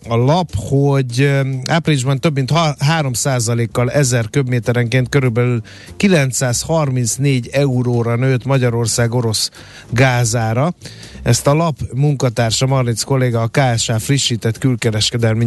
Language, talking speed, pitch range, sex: Hungarian, 110 wpm, 115-135 Hz, male